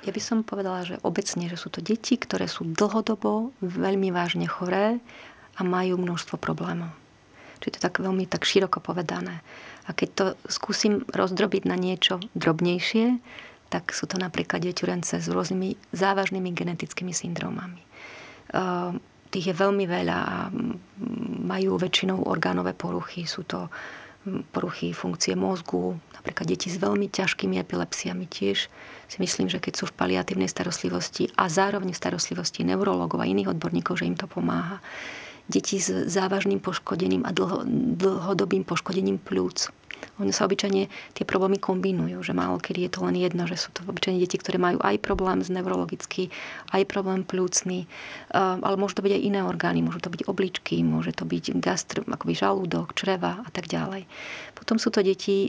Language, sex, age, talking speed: Slovak, female, 30-49, 160 wpm